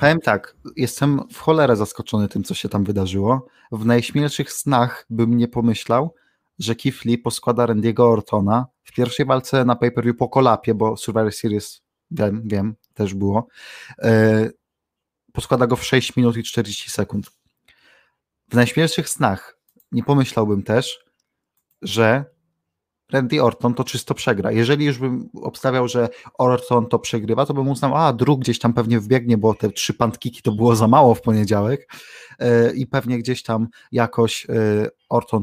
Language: Polish